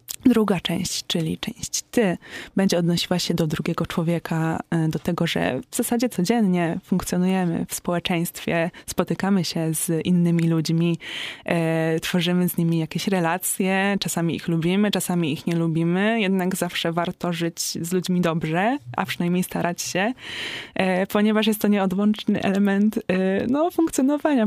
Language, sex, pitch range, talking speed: Polish, female, 170-195 Hz, 130 wpm